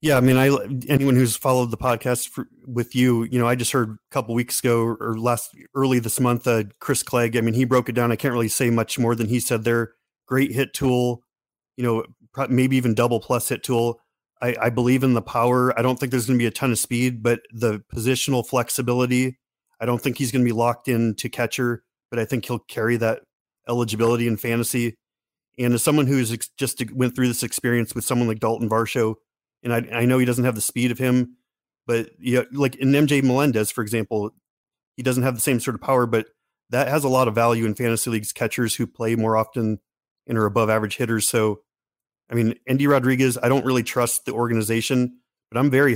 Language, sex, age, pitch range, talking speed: English, male, 30-49, 115-130 Hz, 225 wpm